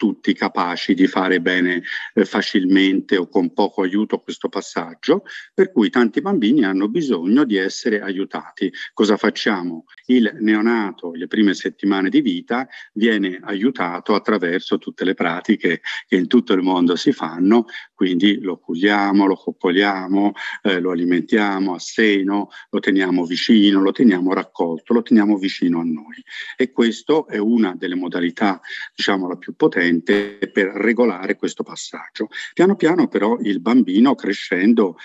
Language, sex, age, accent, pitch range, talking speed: Italian, male, 50-69, native, 95-125 Hz, 145 wpm